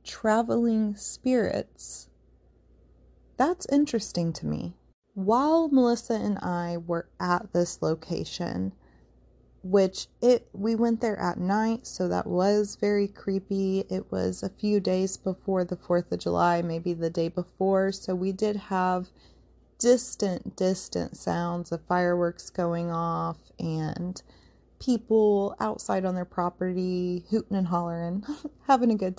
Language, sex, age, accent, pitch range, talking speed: English, female, 30-49, American, 175-225 Hz, 130 wpm